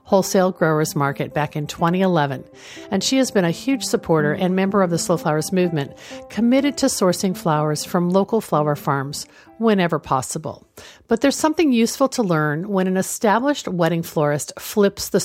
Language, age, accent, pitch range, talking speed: English, 50-69, American, 155-210 Hz, 170 wpm